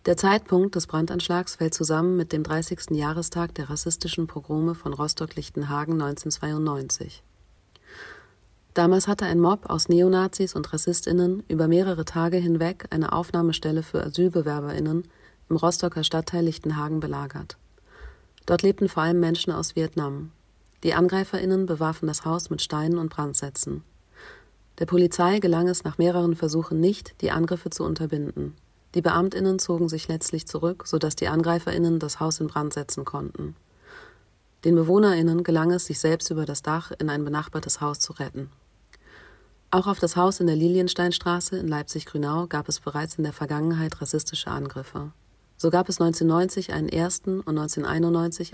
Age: 40-59